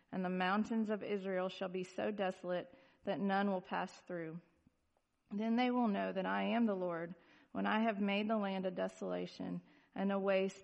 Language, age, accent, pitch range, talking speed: English, 40-59, American, 175-210 Hz, 190 wpm